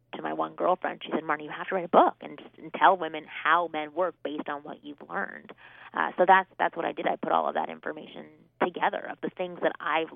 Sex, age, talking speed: female, 30-49, 260 wpm